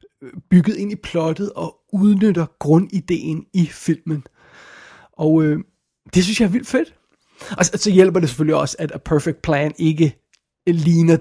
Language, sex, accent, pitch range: Danish, male, native, 155-180 Hz